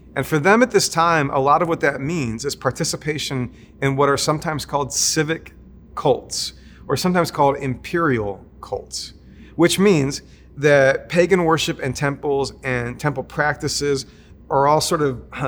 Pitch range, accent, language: 125-145 Hz, American, English